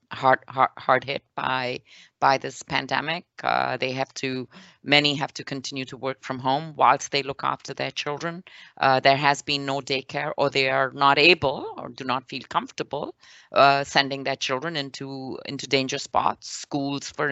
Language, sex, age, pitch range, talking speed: English, female, 30-49, 135-160 Hz, 180 wpm